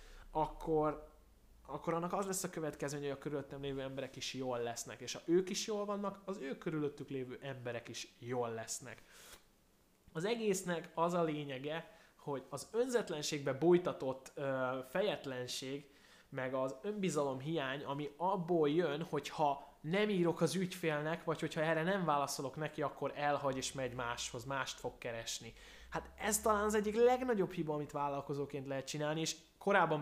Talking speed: 155 wpm